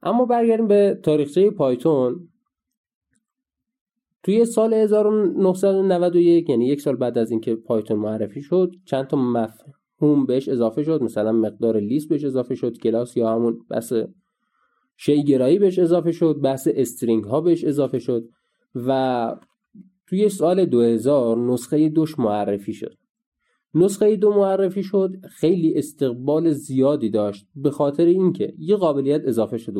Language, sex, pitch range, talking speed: Persian, male, 120-175 Hz, 135 wpm